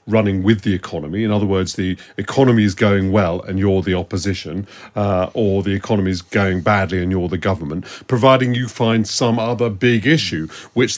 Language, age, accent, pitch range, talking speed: English, 40-59, British, 95-120 Hz, 190 wpm